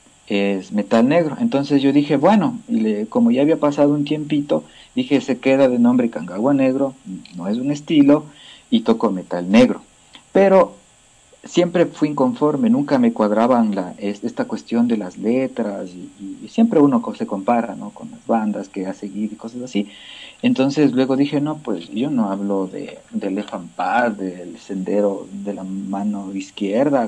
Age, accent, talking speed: 50-69, Mexican, 165 wpm